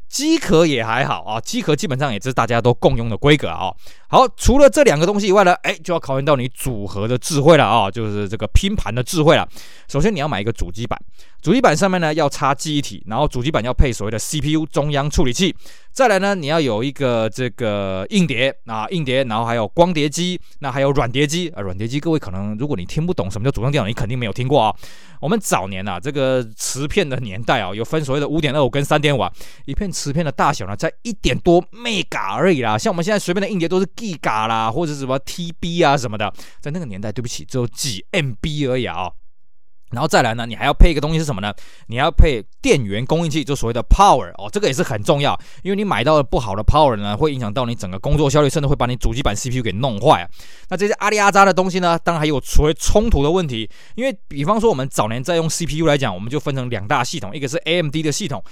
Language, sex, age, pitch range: Chinese, male, 20-39, 115-170 Hz